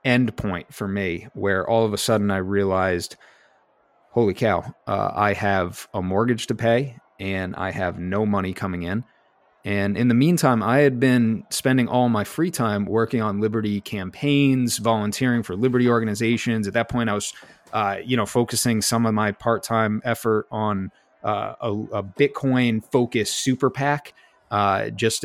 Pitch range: 100-120 Hz